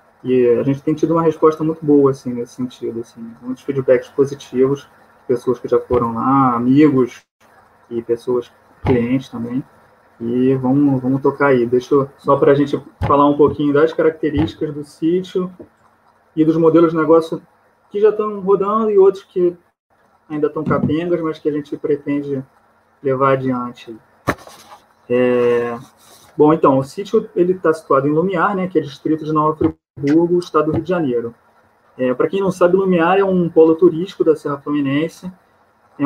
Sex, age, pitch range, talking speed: male, 20-39, 135-165 Hz, 170 wpm